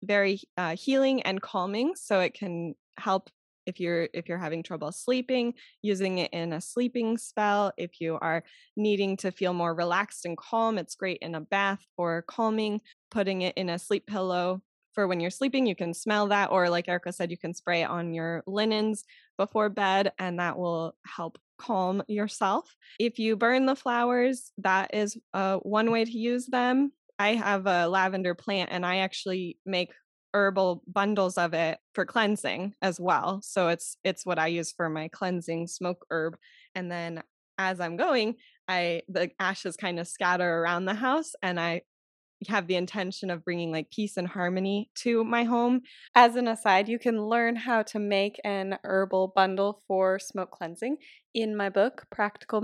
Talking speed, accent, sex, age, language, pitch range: 180 wpm, American, female, 10-29, English, 180-225 Hz